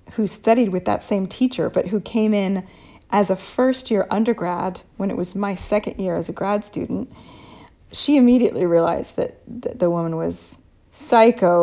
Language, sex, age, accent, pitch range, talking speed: English, female, 40-59, American, 180-230 Hz, 170 wpm